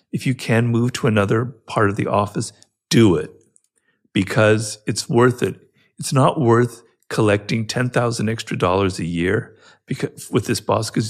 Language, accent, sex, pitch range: English, American, male, 110-150 Hz